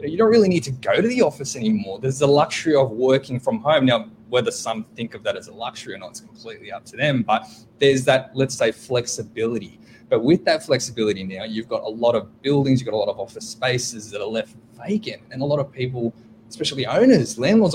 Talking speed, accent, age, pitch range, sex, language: 235 wpm, Australian, 20-39, 115-140 Hz, male, English